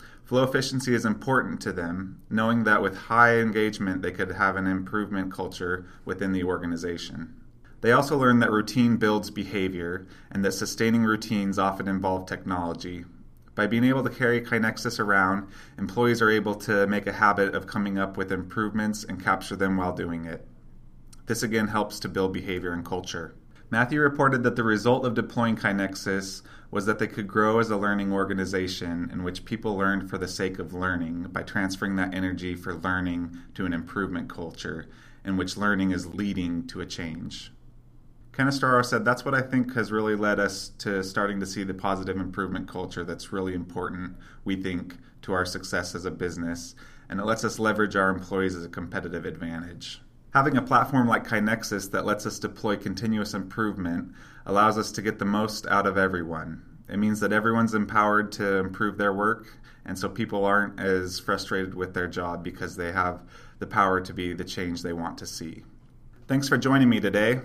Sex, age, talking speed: male, 20-39, 185 wpm